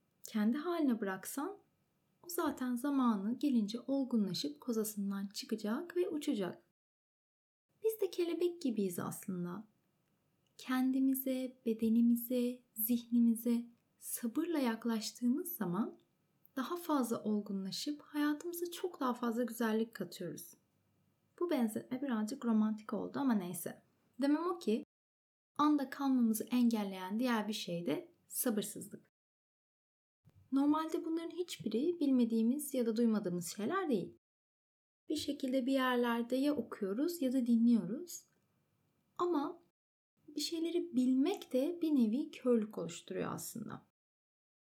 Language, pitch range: Turkish, 225-300 Hz